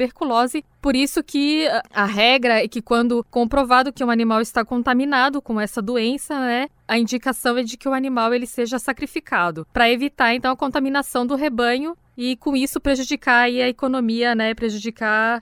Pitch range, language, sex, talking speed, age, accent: 235-285 Hz, Portuguese, female, 170 wpm, 10-29, Brazilian